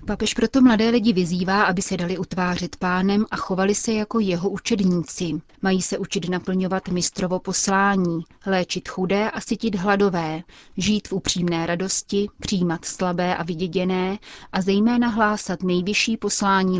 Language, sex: Czech, female